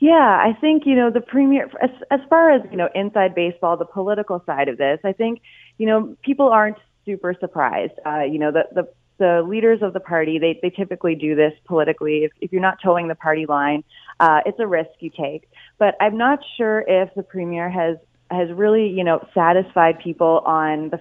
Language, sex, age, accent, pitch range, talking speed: English, female, 30-49, American, 160-195 Hz, 210 wpm